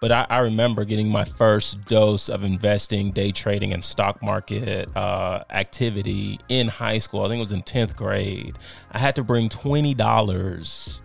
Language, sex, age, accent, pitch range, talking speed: English, male, 30-49, American, 105-130 Hz, 175 wpm